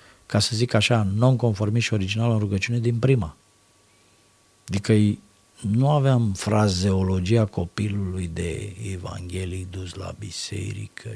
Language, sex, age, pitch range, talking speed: Romanian, male, 50-69, 100-120 Hz, 115 wpm